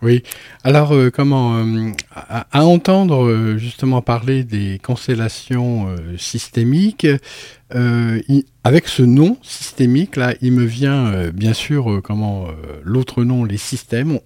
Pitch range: 115-145 Hz